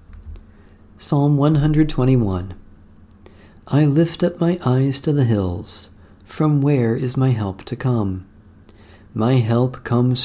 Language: English